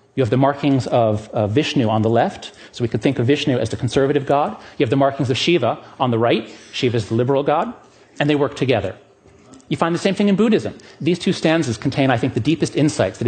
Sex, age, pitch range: male, 30-49, 110-145 Hz